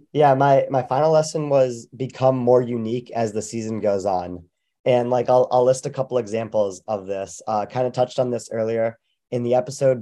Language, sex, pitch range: English, male, 110-130 Hz